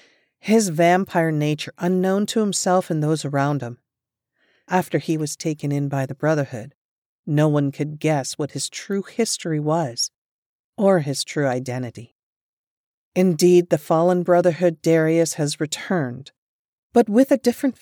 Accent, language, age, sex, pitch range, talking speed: American, English, 40-59, female, 145-180 Hz, 140 wpm